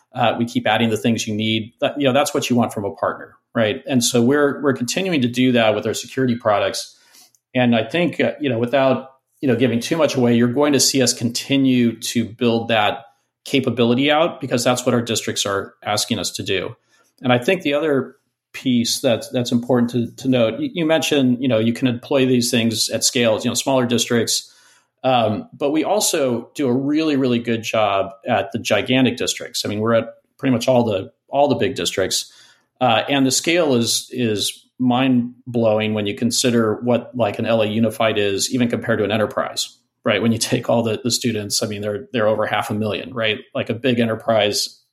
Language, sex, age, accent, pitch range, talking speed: English, male, 40-59, American, 110-130 Hz, 215 wpm